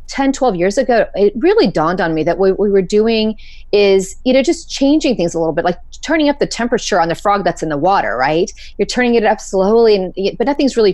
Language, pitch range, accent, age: English, 175-220 Hz, American, 30-49